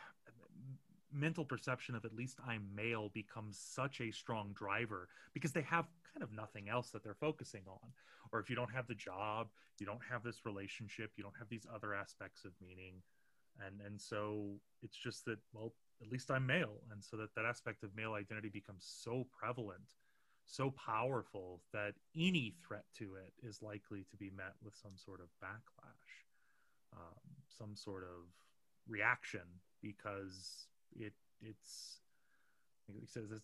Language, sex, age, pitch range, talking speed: English, male, 30-49, 100-125 Hz, 165 wpm